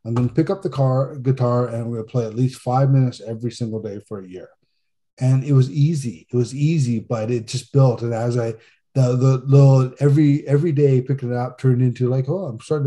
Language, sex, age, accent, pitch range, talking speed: English, male, 20-39, American, 120-135 Hz, 240 wpm